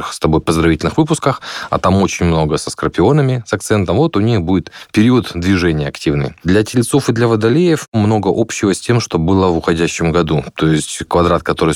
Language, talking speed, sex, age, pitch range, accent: Russian, 190 wpm, male, 20-39, 85-110 Hz, native